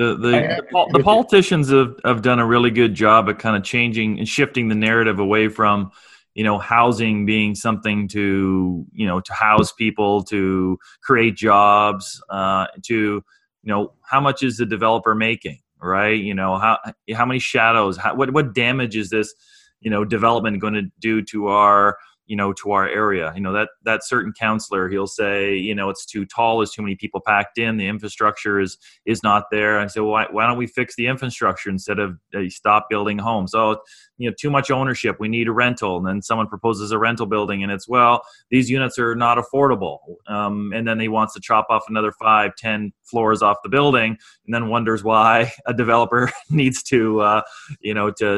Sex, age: male, 30-49